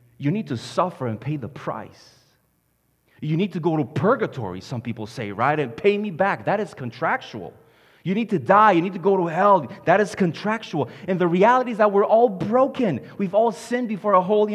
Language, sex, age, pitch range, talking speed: English, male, 30-49, 125-210 Hz, 215 wpm